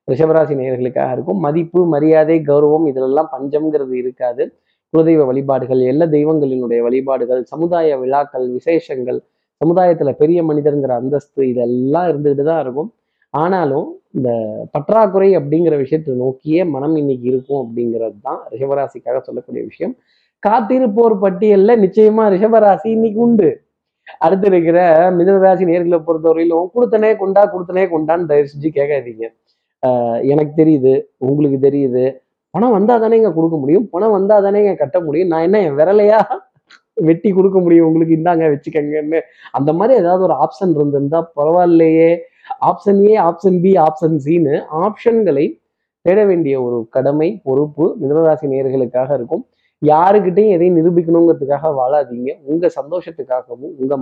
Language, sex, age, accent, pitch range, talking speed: Tamil, male, 20-39, native, 140-185 Hz, 125 wpm